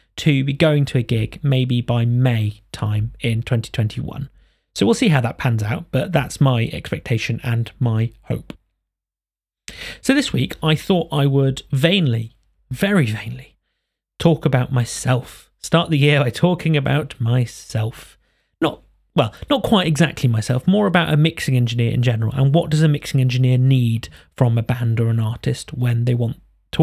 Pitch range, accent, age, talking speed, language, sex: 115-150 Hz, British, 30-49, 170 wpm, English, male